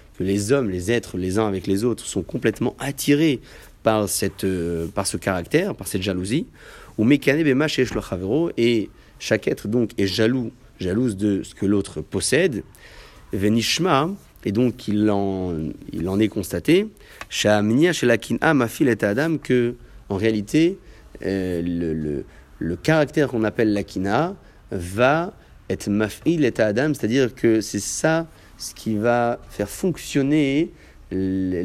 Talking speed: 140 wpm